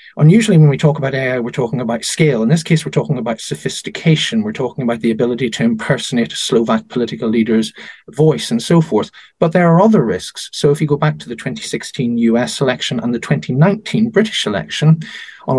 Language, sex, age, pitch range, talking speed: English, male, 40-59, 130-210 Hz, 205 wpm